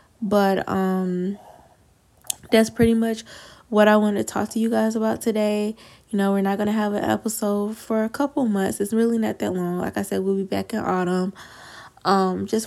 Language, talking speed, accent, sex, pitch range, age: English, 205 wpm, American, female, 190-220 Hz, 10-29